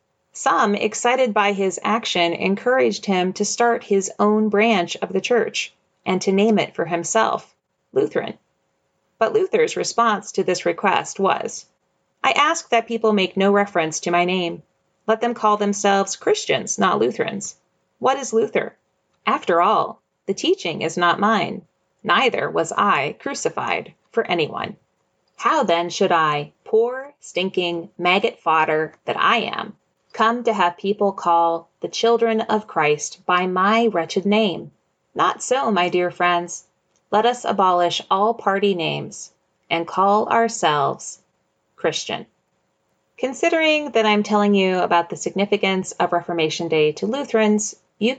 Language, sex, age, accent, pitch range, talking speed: English, female, 30-49, American, 175-225 Hz, 145 wpm